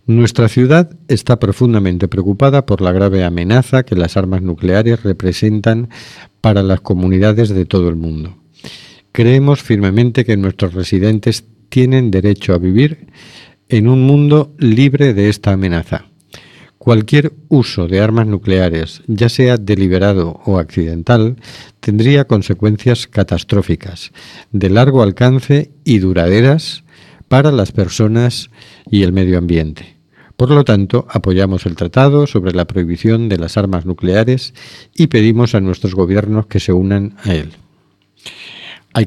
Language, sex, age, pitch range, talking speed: Spanish, male, 50-69, 95-125 Hz, 130 wpm